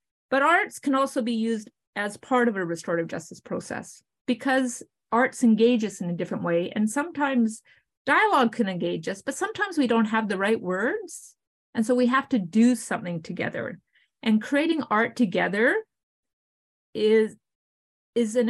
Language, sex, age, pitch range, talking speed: English, female, 30-49, 200-245 Hz, 160 wpm